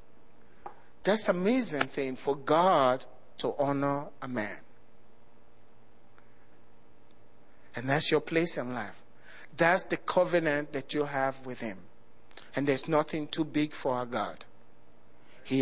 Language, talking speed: English, 125 wpm